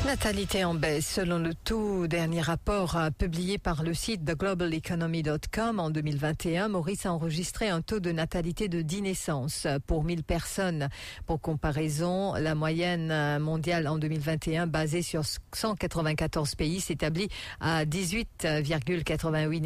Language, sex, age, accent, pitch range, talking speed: English, female, 50-69, French, 155-190 Hz, 135 wpm